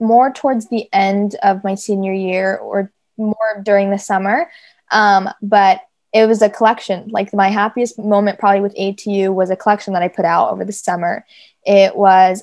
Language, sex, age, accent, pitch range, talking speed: English, female, 20-39, American, 195-225 Hz, 185 wpm